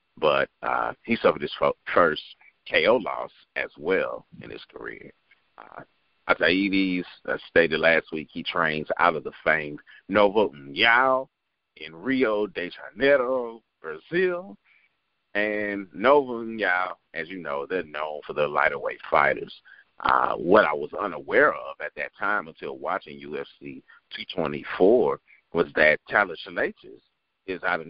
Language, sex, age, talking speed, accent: English, male, 40-59, 140 wpm, American